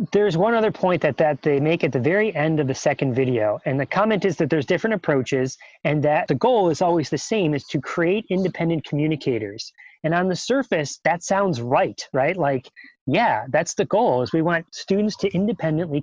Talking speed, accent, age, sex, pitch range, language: 210 wpm, American, 30-49, male, 145-175 Hz, English